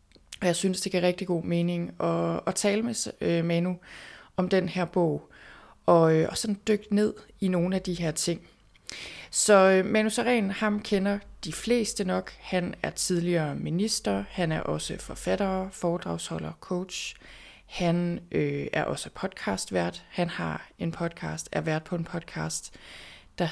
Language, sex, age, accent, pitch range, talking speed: Danish, female, 20-39, native, 165-195 Hz, 145 wpm